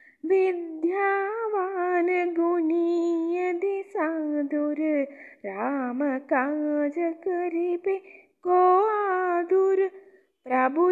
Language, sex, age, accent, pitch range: Tamil, female, 20-39, native, 305-385 Hz